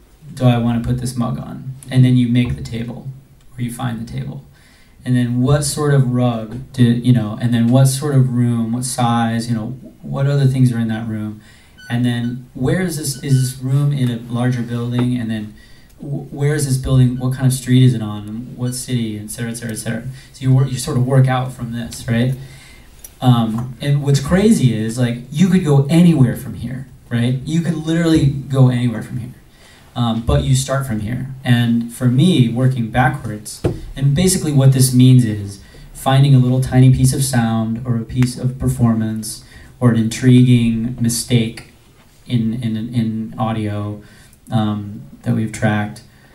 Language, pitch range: English, 115-130 Hz